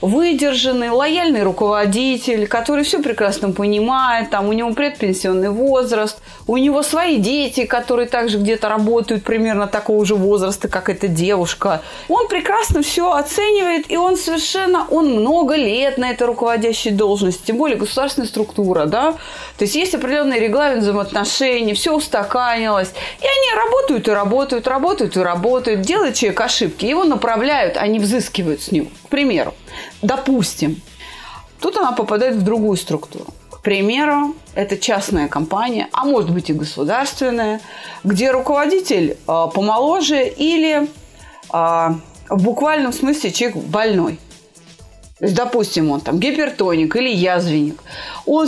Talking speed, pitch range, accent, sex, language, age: 135 wpm, 205-290 Hz, native, female, Russian, 30-49